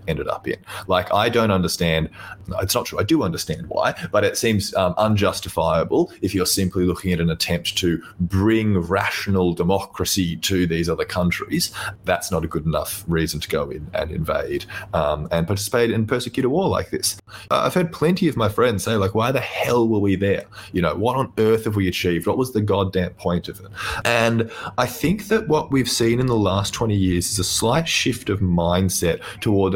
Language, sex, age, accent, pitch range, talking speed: English, male, 30-49, Australian, 85-110 Hz, 205 wpm